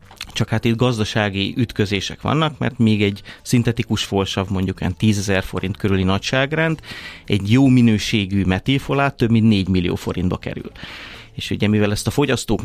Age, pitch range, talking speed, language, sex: 30-49, 100-125 Hz, 150 wpm, Hungarian, male